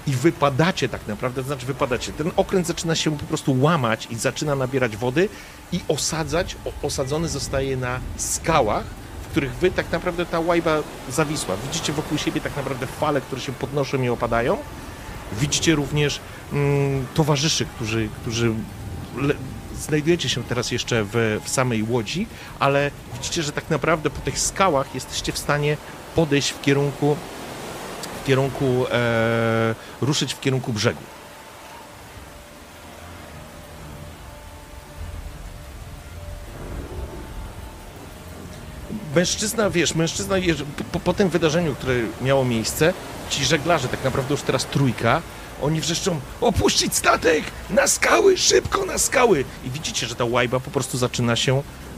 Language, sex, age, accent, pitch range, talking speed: Polish, male, 40-59, native, 115-155 Hz, 130 wpm